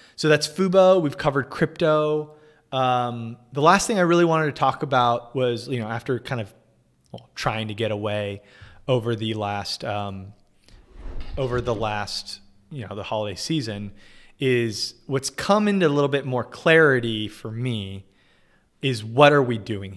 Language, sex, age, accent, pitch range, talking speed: English, male, 20-39, American, 110-135 Hz, 165 wpm